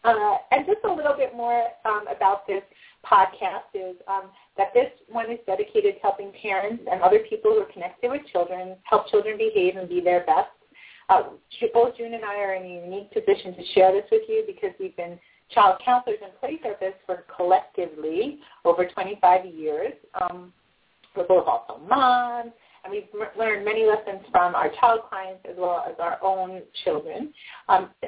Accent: American